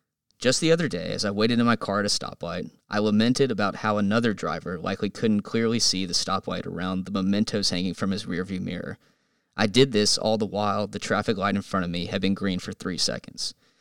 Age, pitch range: 20-39, 100-115 Hz